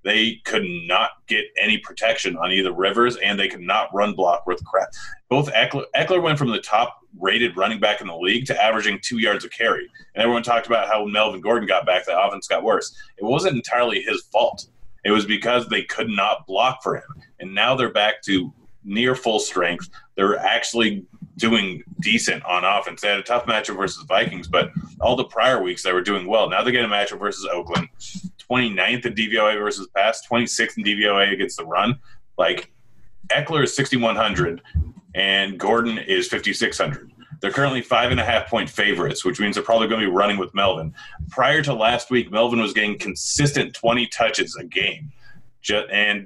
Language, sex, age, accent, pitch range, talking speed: English, male, 30-49, American, 100-130 Hz, 190 wpm